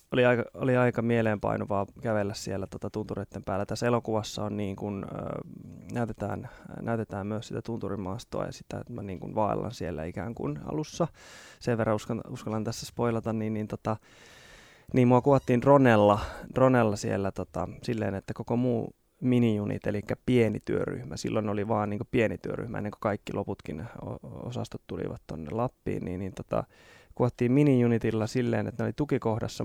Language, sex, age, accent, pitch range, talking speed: Finnish, male, 20-39, native, 105-120 Hz, 155 wpm